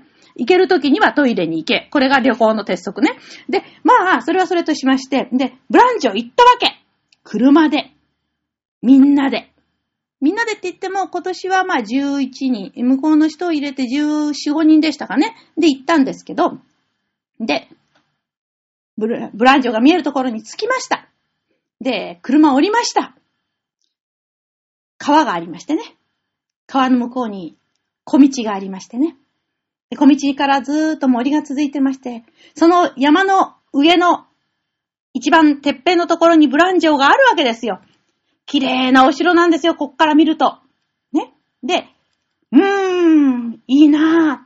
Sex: female